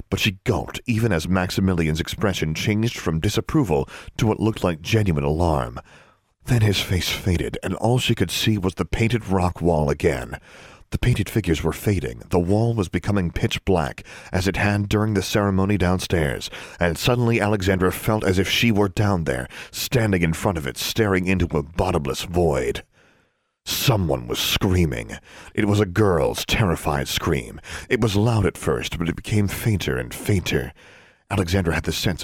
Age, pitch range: 40-59, 85-110 Hz